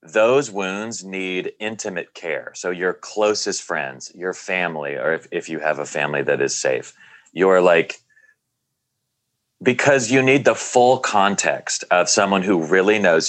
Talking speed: 155 wpm